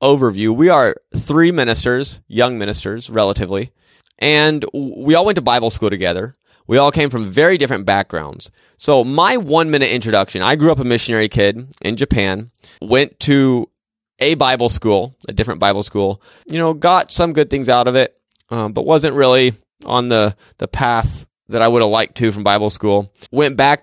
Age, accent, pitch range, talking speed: 20-39, American, 100-130 Hz, 180 wpm